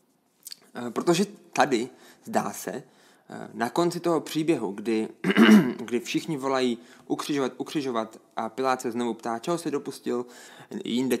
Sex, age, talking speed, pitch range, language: male, 20-39, 125 wpm, 115-145 Hz, Czech